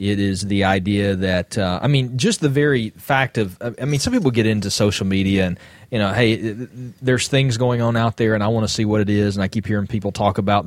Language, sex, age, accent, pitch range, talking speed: English, male, 30-49, American, 100-135 Hz, 260 wpm